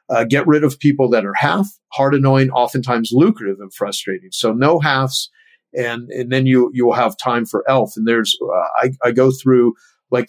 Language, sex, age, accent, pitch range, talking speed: English, male, 50-69, American, 120-145 Hz, 205 wpm